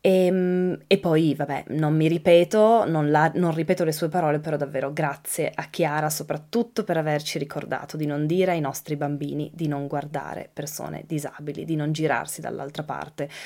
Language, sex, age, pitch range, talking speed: Italian, female, 20-39, 155-185 Hz, 170 wpm